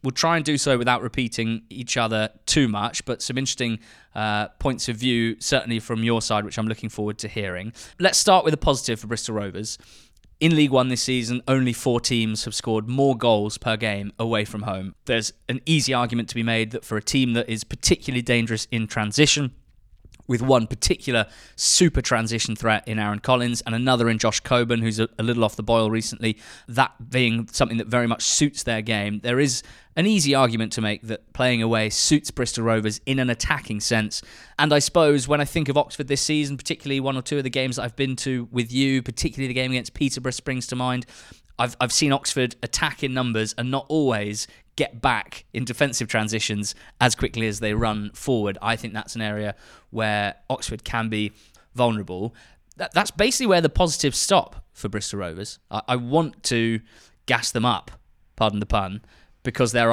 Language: English